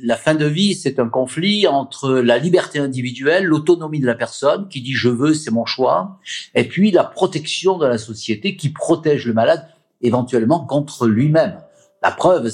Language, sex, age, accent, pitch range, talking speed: French, male, 50-69, French, 120-180 Hz, 180 wpm